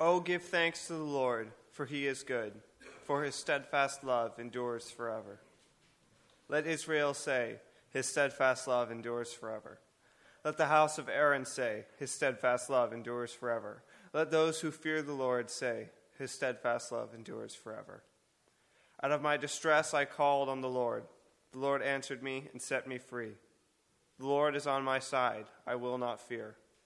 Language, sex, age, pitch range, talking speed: English, male, 20-39, 125-145 Hz, 165 wpm